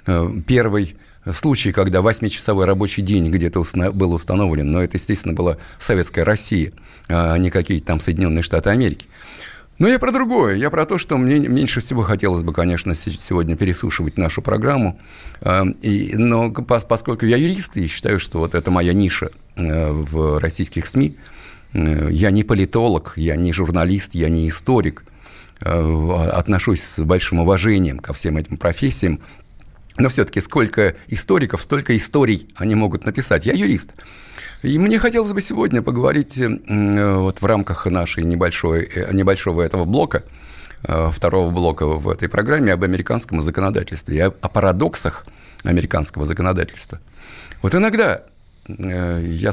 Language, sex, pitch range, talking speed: Russian, male, 85-105 Hz, 135 wpm